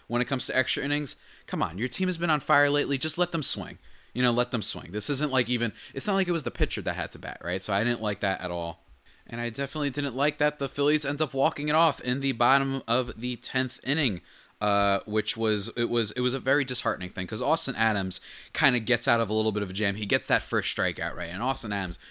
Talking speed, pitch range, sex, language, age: 270 wpm, 95-130 Hz, male, English, 20-39